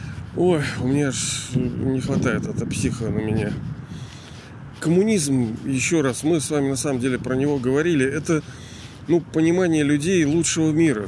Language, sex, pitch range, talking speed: Russian, male, 130-170 Hz, 150 wpm